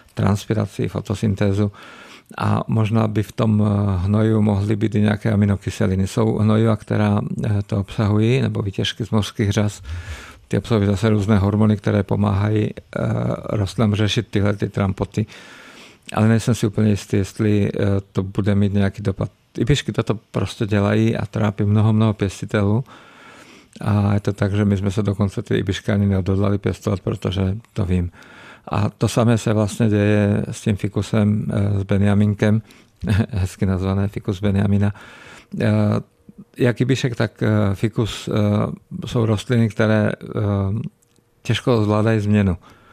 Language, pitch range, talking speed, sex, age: Czech, 100-115 Hz, 135 wpm, male, 50-69